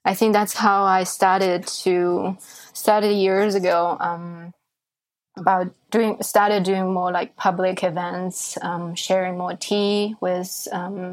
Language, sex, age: English, female, 20-39